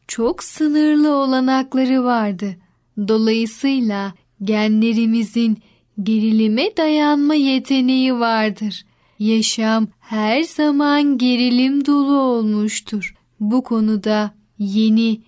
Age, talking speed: 10-29, 75 wpm